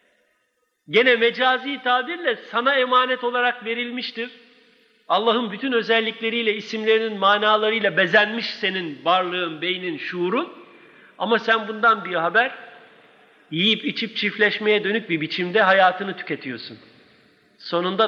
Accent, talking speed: native, 105 wpm